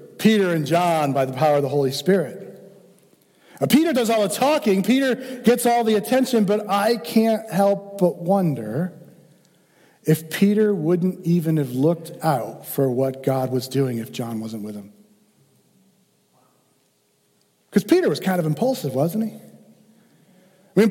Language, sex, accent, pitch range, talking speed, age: English, male, American, 155-230 Hz, 155 wpm, 50-69